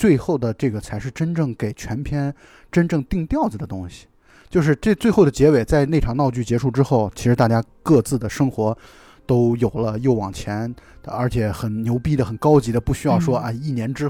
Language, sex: Chinese, male